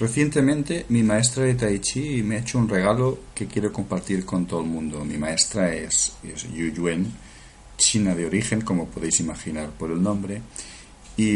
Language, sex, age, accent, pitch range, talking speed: Spanish, male, 50-69, Spanish, 90-125 Hz, 175 wpm